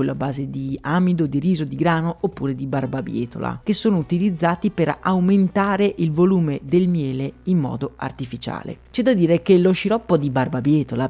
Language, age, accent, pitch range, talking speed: Italian, 30-49, native, 145-180 Hz, 170 wpm